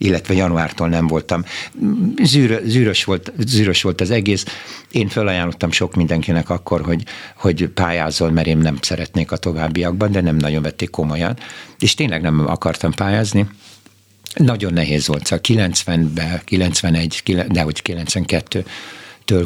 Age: 60-79